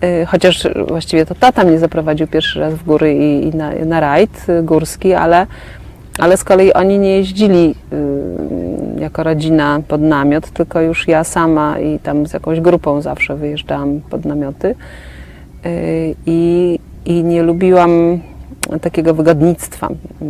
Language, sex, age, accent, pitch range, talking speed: Polish, female, 30-49, native, 160-180 Hz, 135 wpm